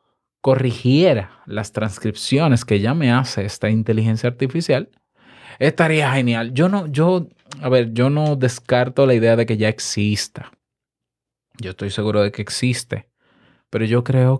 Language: Spanish